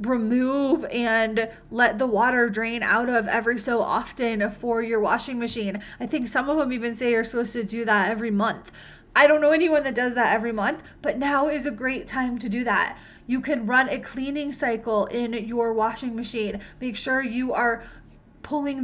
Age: 20-39